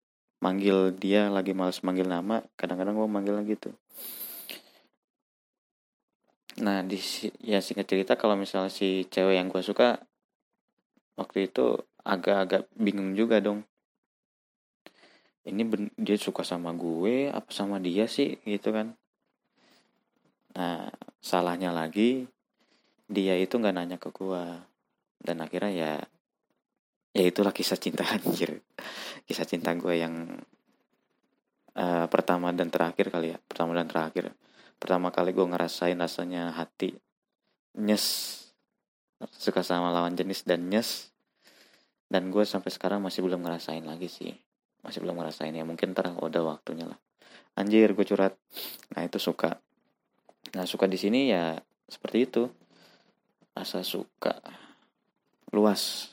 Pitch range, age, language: 90-100 Hz, 20-39, Indonesian